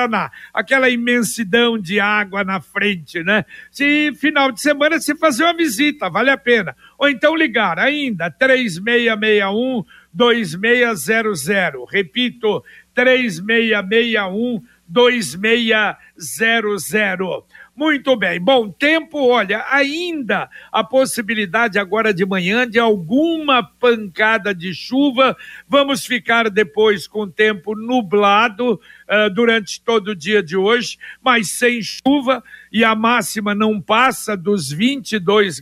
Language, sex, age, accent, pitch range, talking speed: Portuguese, male, 60-79, Brazilian, 205-250 Hz, 110 wpm